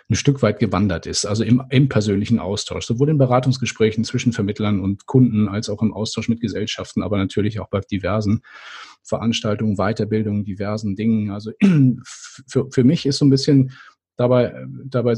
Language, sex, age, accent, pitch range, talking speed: German, male, 40-59, German, 110-135 Hz, 165 wpm